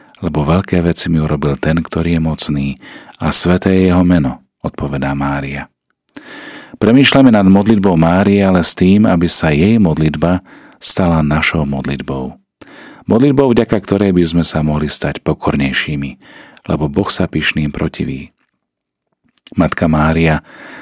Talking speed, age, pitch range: 135 wpm, 40-59, 75-90 Hz